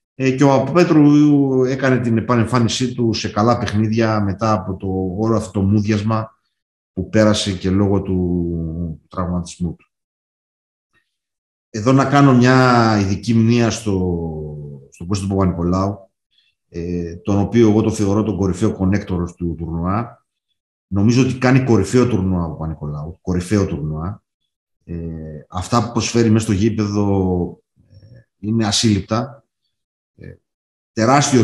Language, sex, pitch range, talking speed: Greek, male, 95-115 Hz, 120 wpm